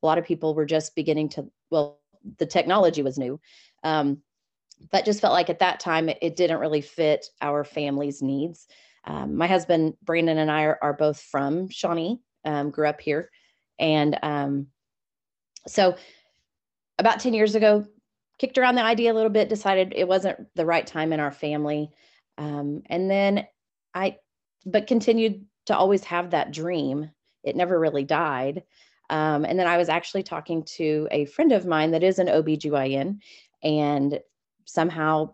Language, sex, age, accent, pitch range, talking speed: English, female, 30-49, American, 150-185 Hz, 170 wpm